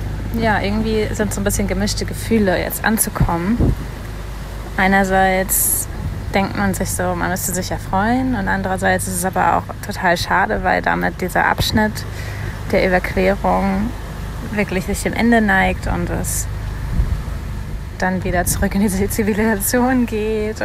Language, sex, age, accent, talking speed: German, female, 20-39, German, 140 wpm